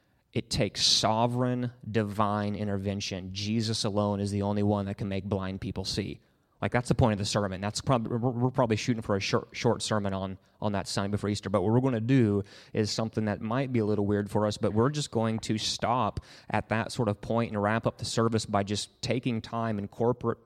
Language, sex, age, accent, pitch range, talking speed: English, male, 30-49, American, 100-115 Hz, 230 wpm